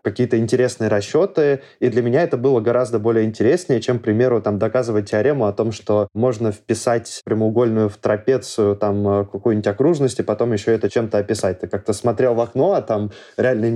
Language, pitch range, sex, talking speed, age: Russian, 110-125 Hz, male, 185 wpm, 20-39